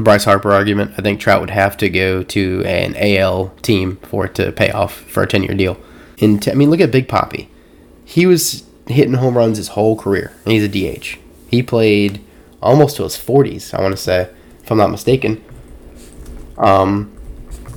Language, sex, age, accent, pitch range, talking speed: English, male, 20-39, American, 95-120 Hz, 195 wpm